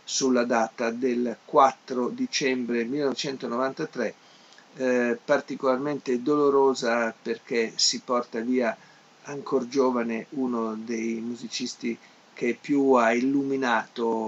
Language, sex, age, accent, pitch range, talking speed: Italian, male, 50-69, native, 115-135 Hz, 90 wpm